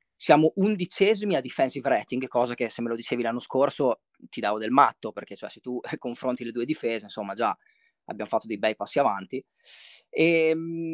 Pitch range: 110-155 Hz